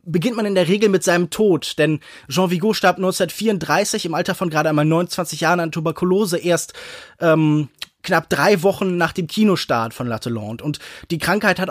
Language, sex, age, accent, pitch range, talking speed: German, male, 20-39, German, 155-190 Hz, 185 wpm